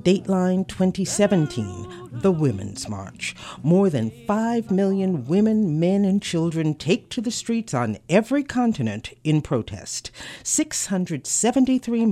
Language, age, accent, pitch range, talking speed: English, 50-69, American, 120-190 Hz, 115 wpm